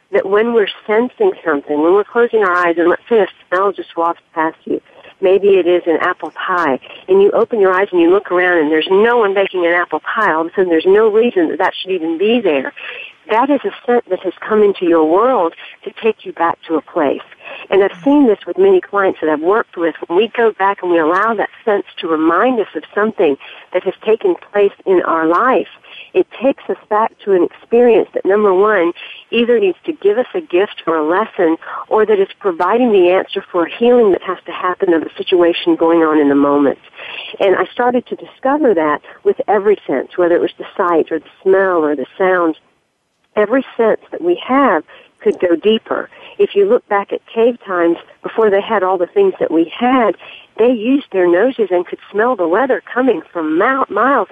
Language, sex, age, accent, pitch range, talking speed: English, female, 50-69, American, 175-260 Hz, 220 wpm